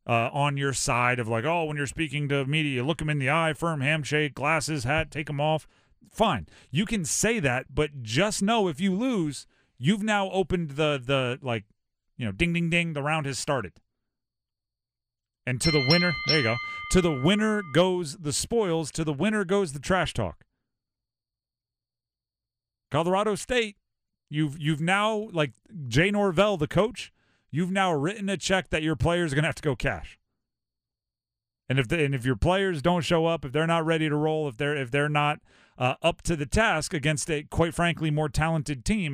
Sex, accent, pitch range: male, American, 125-170 Hz